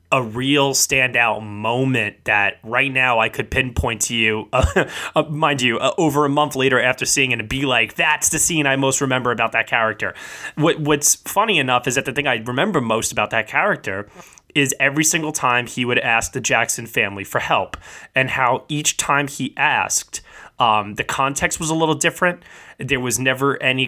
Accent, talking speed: American, 200 wpm